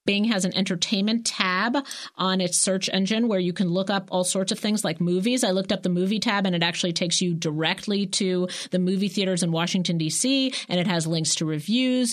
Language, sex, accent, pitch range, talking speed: English, female, American, 160-200 Hz, 225 wpm